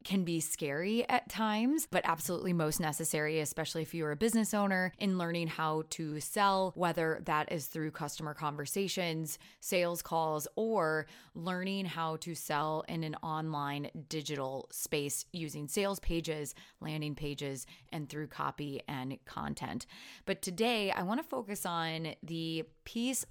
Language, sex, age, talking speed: English, female, 20-39, 145 wpm